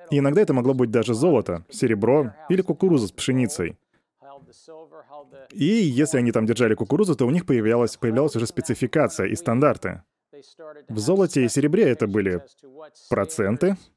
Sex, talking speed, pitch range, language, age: male, 145 wpm, 115-155 Hz, Russian, 20-39